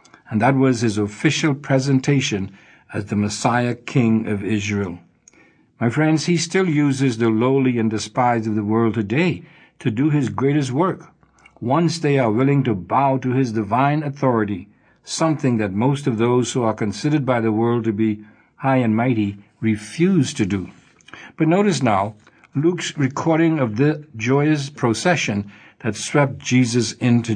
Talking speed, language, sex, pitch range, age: 160 wpm, English, male, 115-150 Hz, 60-79